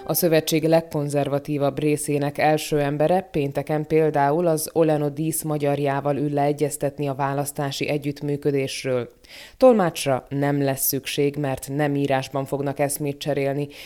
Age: 20-39